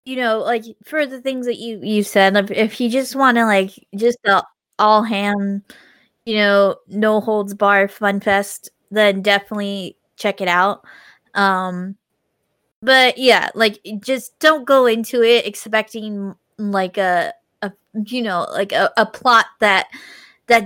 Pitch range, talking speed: 195-230 Hz, 155 wpm